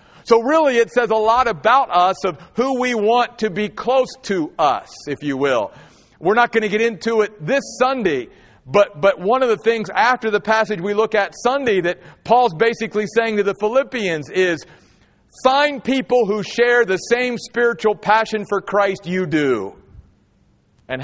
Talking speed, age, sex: 180 wpm, 50-69, male